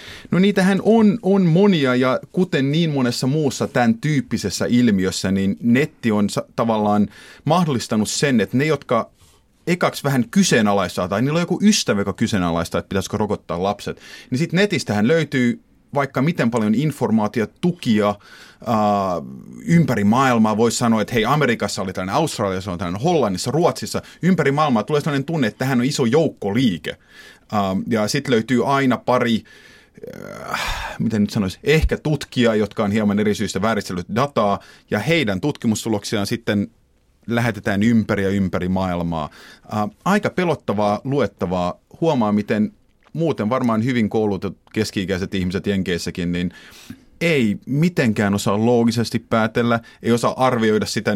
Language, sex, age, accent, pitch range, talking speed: Finnish, male, 30-49, native, 100-135 Hz, 135 wpm